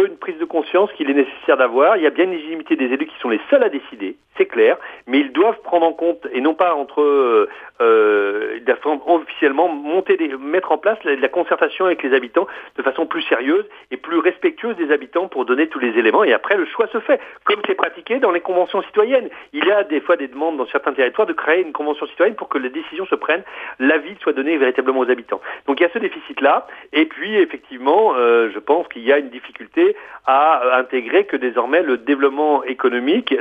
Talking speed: 225 wpm